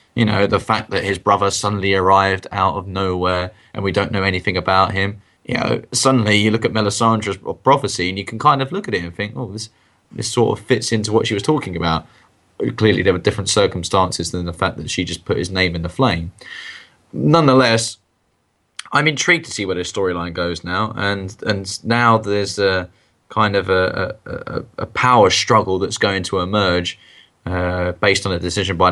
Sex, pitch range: male, 90-115 Hz